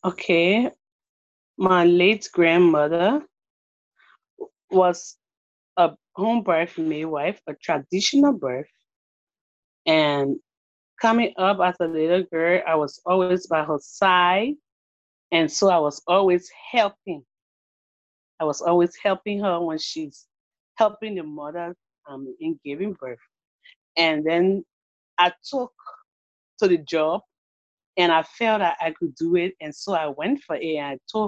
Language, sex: English, female